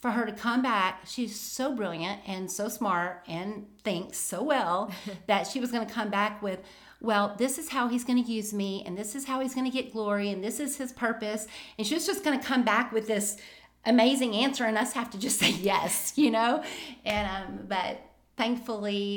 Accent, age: American, 40-59